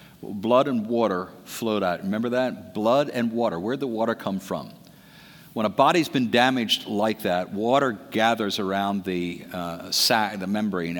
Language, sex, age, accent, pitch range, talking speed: English, male, 50-69, American, 95-125 Hz, 170 wpm